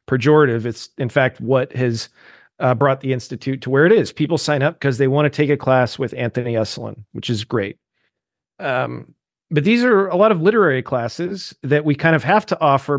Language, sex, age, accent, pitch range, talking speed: English, male, 40-59, American, 125-150 Hz, 210 wpm